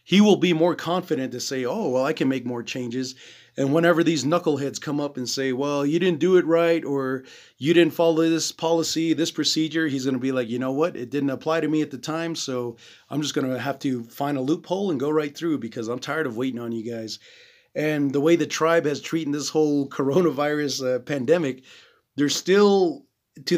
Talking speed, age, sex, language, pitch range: 225 wpm, 30-49, male, English, 130-165 Hz